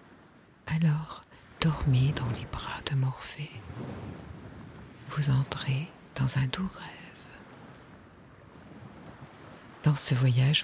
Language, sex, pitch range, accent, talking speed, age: French, female, 125-150 Hz, French, 90 wpm, 50-69